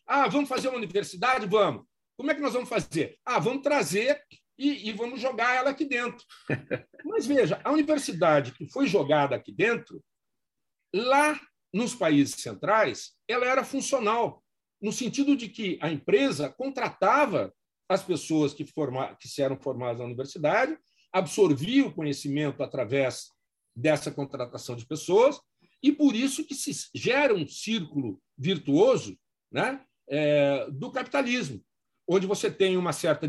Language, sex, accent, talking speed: Portuguese, male, Brazilian, 145 wpm